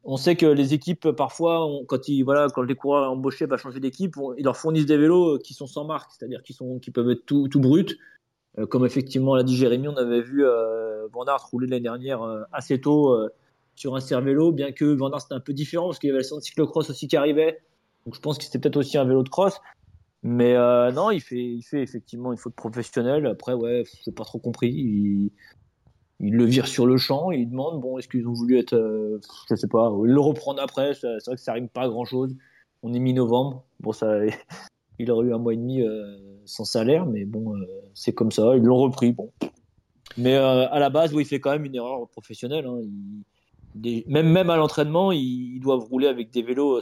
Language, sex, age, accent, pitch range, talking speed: French, male, 20-39, French, 120-145 Hz, 240 wpm